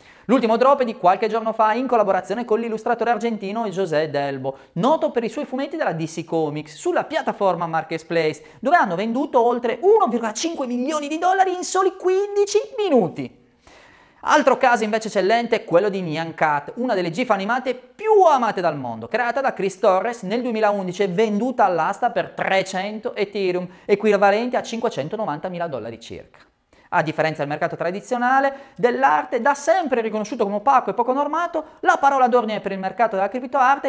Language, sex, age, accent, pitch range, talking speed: Italian, male, 30-49, native, 185-265 Hz, 165 wpm